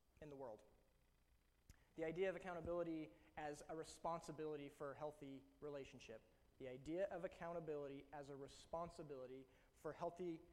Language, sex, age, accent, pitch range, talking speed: English, male, 20-39, American, 140-170 Hz, 130 wpm